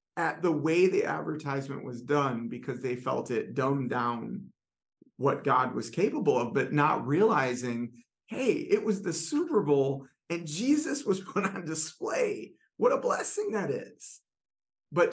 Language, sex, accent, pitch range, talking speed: English, male, American, 125-160 Hz, 155 wpm